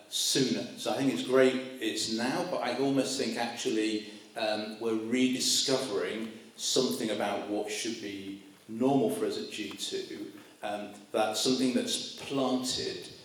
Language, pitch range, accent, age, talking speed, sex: English, 115-145 Hz, British, 40-59, 140 wpm, male